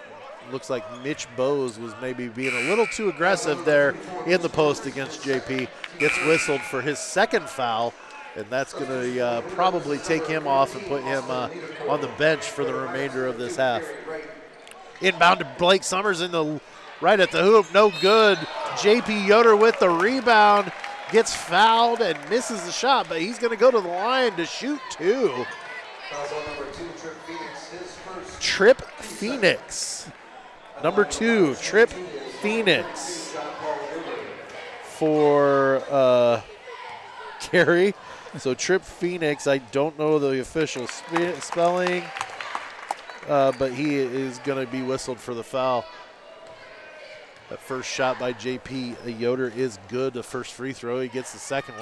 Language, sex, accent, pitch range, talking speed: English, male, American, 130-200 Hz, 140 wpm